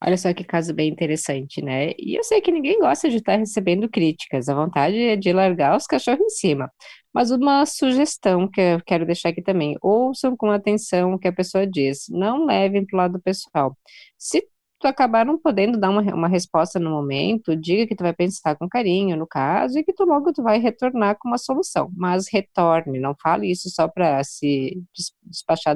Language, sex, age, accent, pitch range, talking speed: Portuguese, female, 20-39, Brazilian, 170-255 Hz, 205 wpm